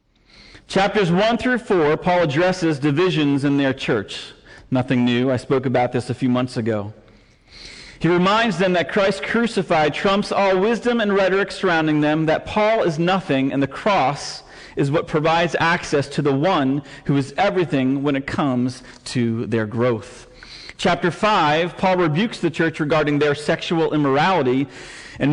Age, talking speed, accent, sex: 40-59, 160 wpm, American, male